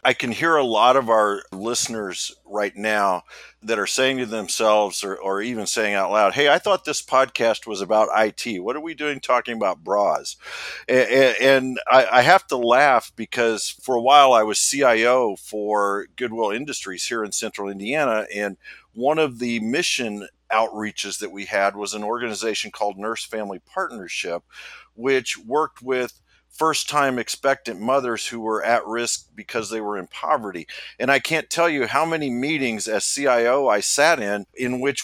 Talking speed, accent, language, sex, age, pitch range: 175 wpm, American, English, male, 50-69, 105-135 Hz